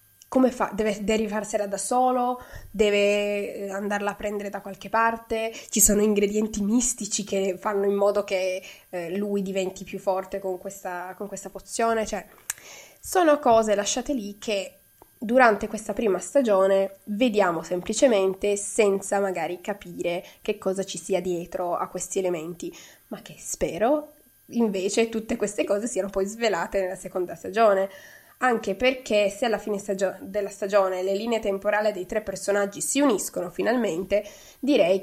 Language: Italian